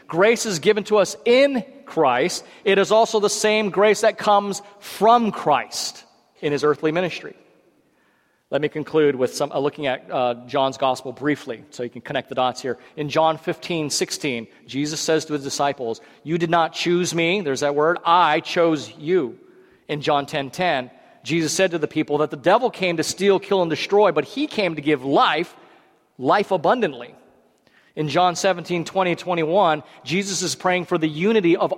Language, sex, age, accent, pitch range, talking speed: English, male, 40-59, American, 150-215 Hz, 185 wpm